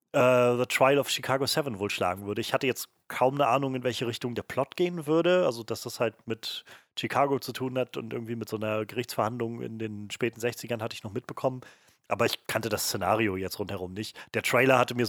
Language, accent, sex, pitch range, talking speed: German, German, male, 105-130 Hz, 225 wpm